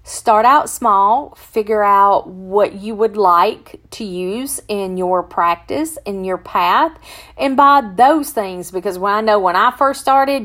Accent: American